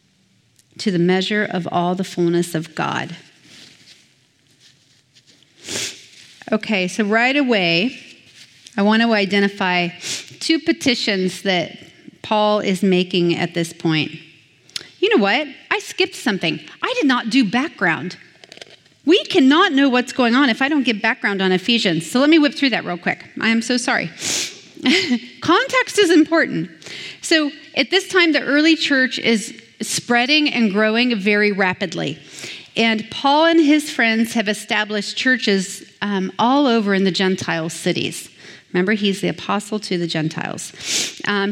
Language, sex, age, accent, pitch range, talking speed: English, female, 30-49, American, 190-265 Hz, 145 wpm